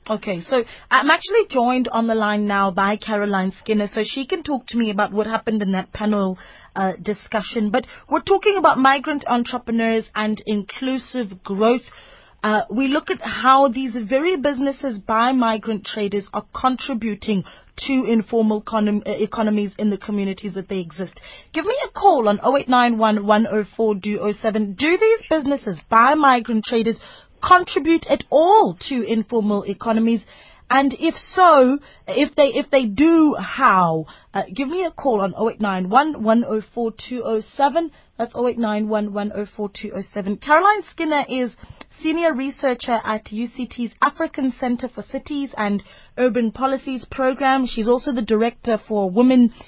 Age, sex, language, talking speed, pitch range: 30-49, female, English, 140 wpm, 210-270 Hz